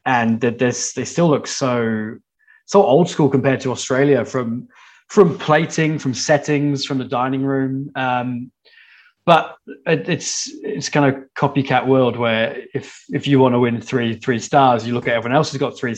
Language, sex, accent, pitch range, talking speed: English, male, British, 120-150 Hz, 180 wpm